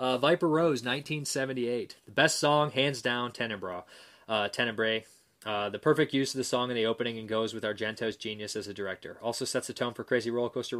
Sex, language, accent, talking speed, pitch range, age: male, English, American, 220 wpm, 110-140 Hz, 20-39